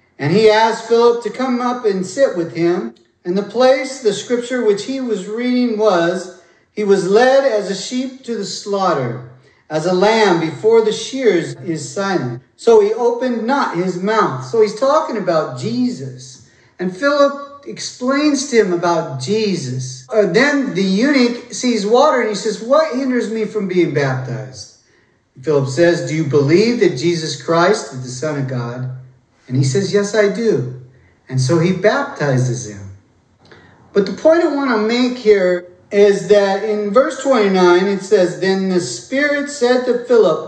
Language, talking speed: English, 170 wpm